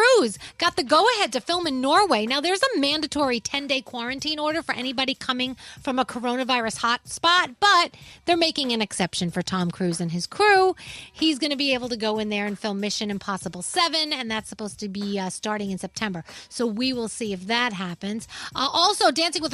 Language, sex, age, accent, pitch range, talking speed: English, female, 30-49, American, 210-295 Hz, 210 wpm